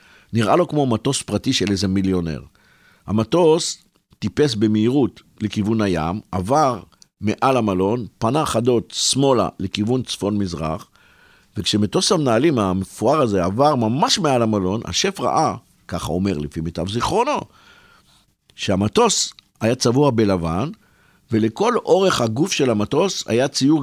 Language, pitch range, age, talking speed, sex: Hebrew, 100-150 Hz, 50-69, 120 wpm, male